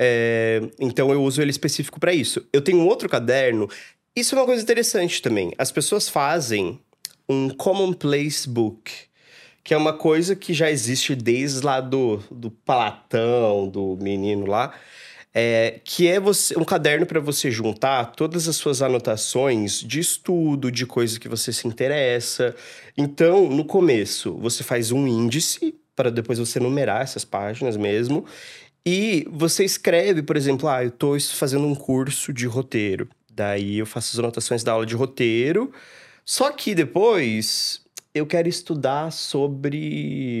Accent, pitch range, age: Brazilian, 120-165 Hz, 20-39